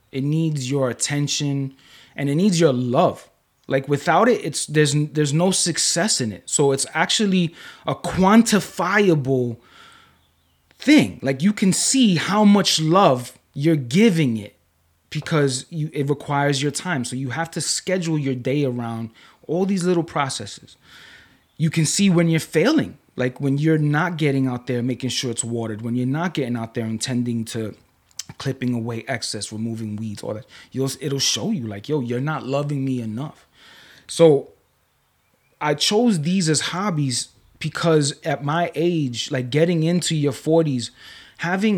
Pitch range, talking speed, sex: 130-170 Hz, 160 wpm, male